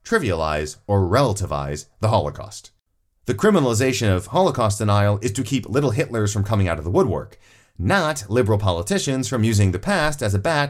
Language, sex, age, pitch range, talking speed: English, male, 30-49, 100-135 Hz, 175 wpm